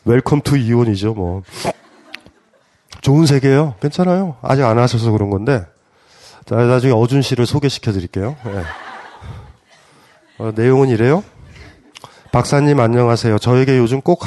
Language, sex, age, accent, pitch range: Korean, male, 30-49, native, 115-160 Hz